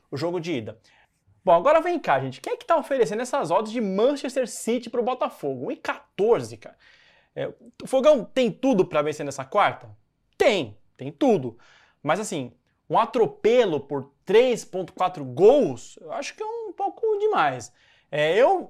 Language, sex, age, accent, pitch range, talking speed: Portuguese, male, 20-39, Brazilian, 170-270 Hz, 165 wpm